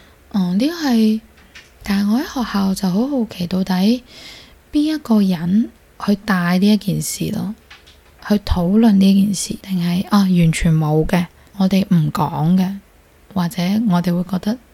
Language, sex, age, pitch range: Chinese, female, 20-39, 170-210 Hz